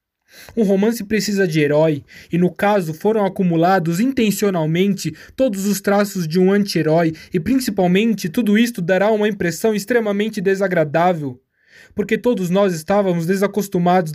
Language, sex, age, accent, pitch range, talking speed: Portuguese, male, 20-39, Brazilian, 160-200 Hz, 130 wpm